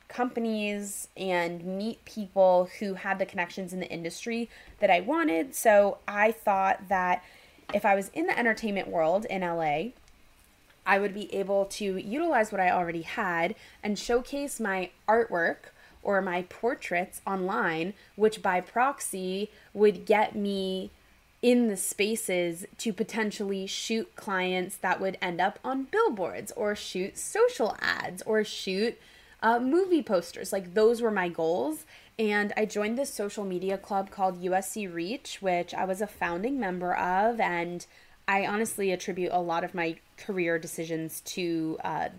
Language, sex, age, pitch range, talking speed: English, female, 20-39, 180-215 Hz, 150 wpm